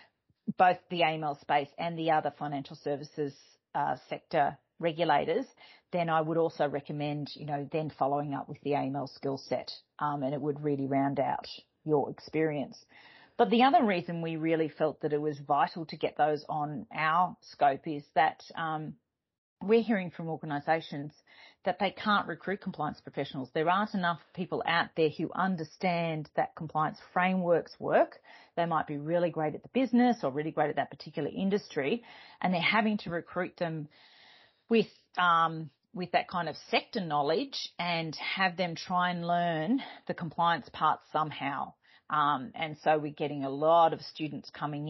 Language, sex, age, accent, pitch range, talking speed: English, female, 40-59, Australian, 145-180 Hz, 170 wpm